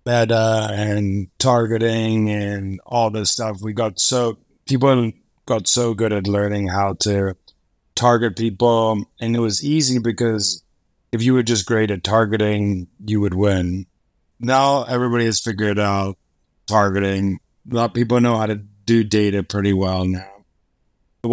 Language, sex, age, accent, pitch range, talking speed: English, male, 30-49, American, 95-115 Hz, 150 wpm